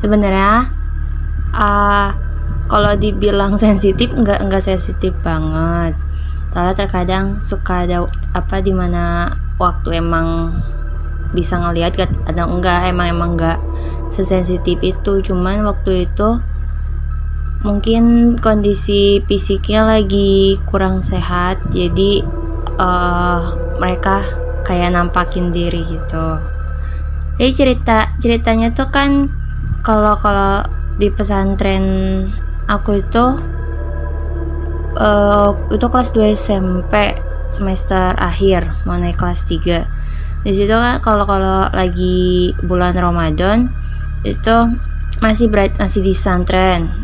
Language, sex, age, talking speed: Indonesian, female, 20-39, 100 wpm